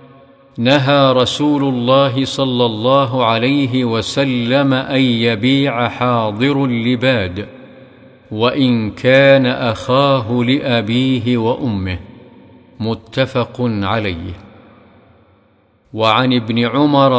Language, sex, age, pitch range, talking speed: Arabic, male, 50-69, 115-135 Hz, 75 wpm